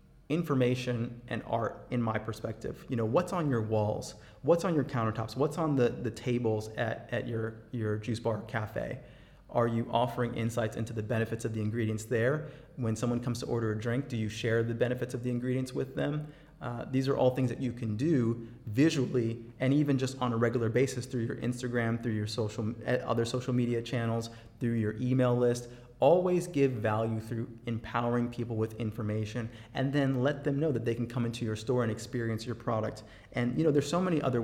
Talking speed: 205 wpm